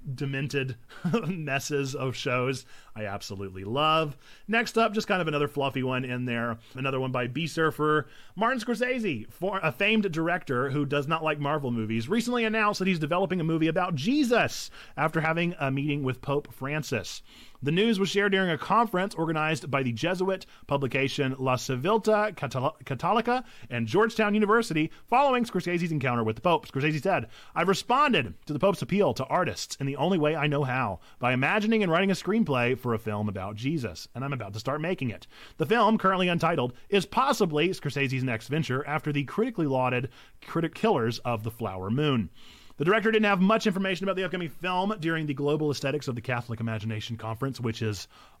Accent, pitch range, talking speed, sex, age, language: American, 130-190 Hz, 180 wpm, male, 30-49, English